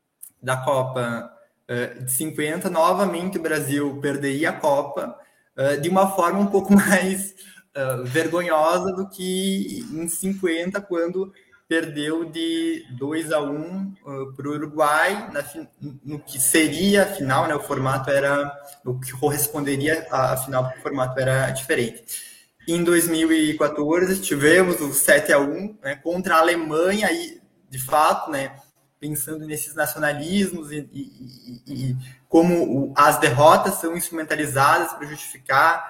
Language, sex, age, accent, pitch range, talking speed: Portuguese, male, 20-39, Brazilian, 140-185 Hz, 140 wpm